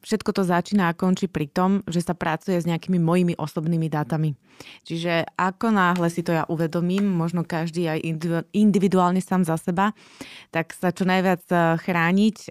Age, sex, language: 20-39, female, Slovak